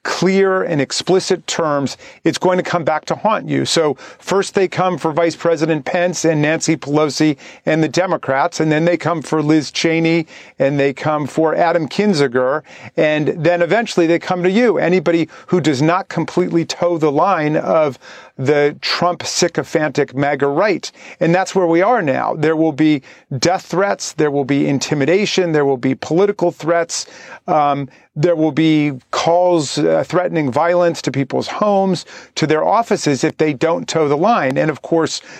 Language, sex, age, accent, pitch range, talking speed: English, male, 40-59, American, 150-175 Hz, 175 wpm